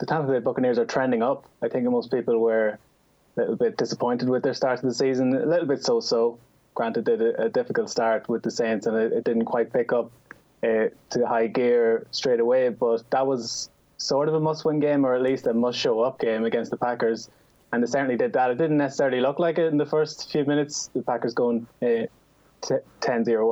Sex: male